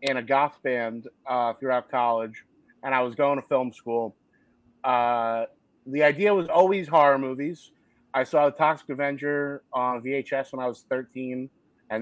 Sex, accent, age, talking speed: male, American, 30-49, 165 wpm